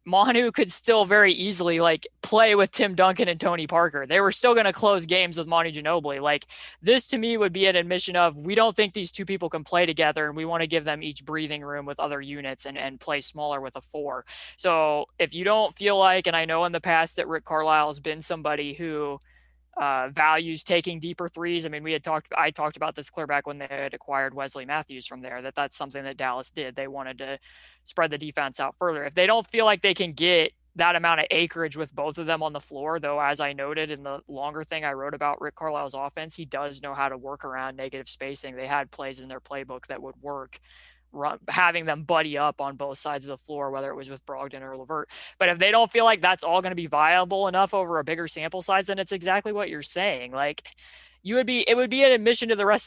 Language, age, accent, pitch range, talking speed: English, 20-39, American, 145-185 Hz, 250 wpm